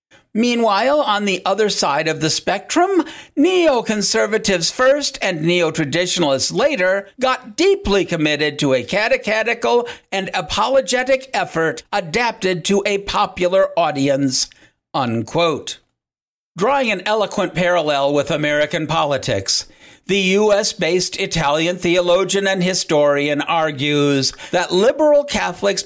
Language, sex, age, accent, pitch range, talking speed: English, male, 50-69, American, 160-225 Hz, 105 wpm